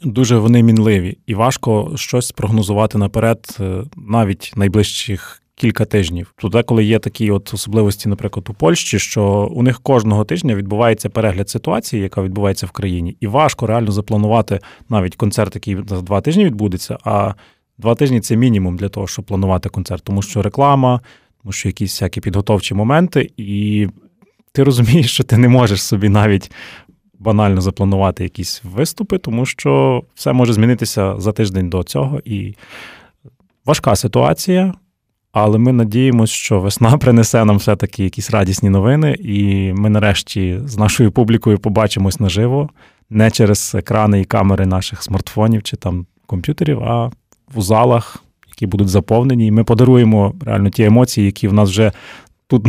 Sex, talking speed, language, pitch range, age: male, 155 wpm, Ukrainian, 100-120 Hz, 20-39